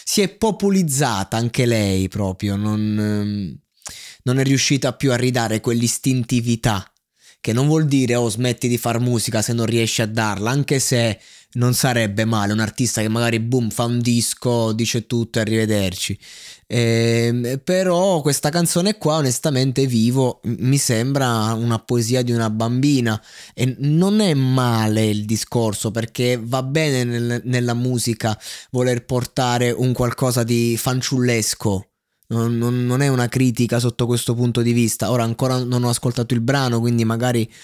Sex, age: male, 20-39